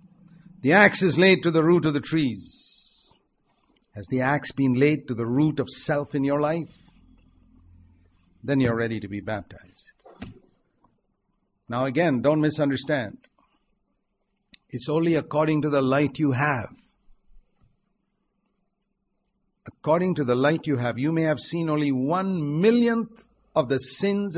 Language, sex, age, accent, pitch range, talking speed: English, male, 60-79, Indian, 125-165 Hz, 140 wpm